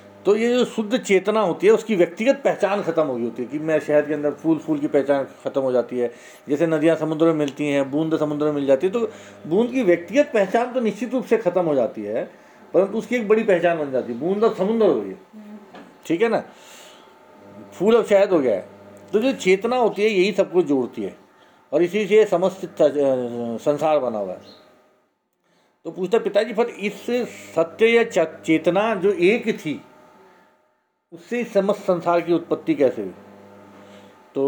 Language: Hindi